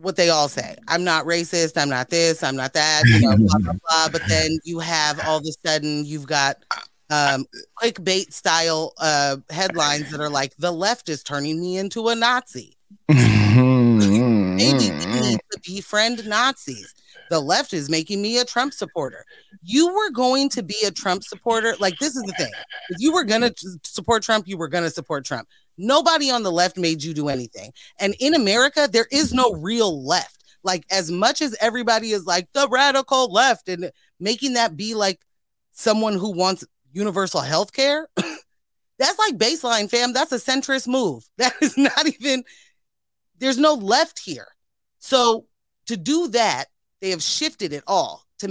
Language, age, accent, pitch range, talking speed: English, 30-49, American, 160-240 Hz, 180 wpm